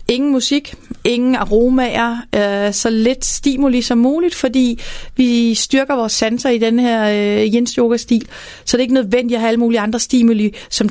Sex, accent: female, native